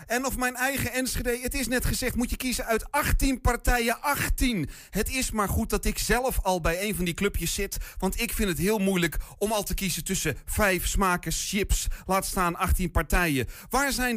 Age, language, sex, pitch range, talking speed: 40-59, Dutch, male, 170-210 Hz, 210 wpm